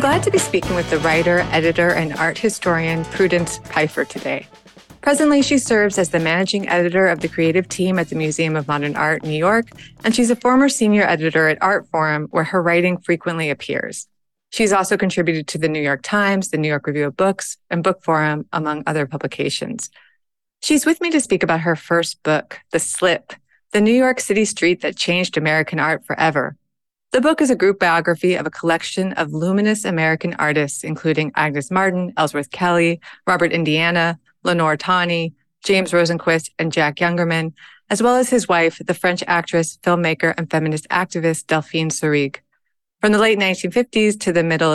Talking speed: 185 wpm